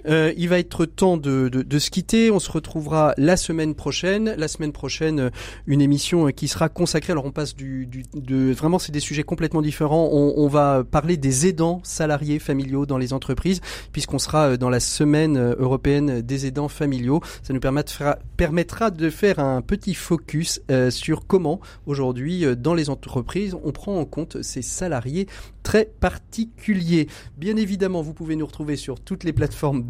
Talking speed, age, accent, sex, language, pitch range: 175 wpm, 40-59, French, male, French, 135-170 Hz